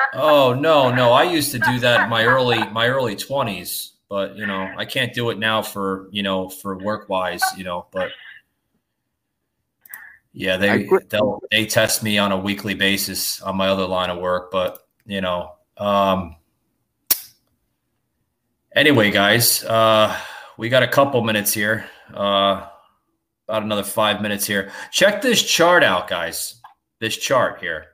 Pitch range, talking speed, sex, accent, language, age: 95-110 Hz, 160 wpm, male, American, English, 30-49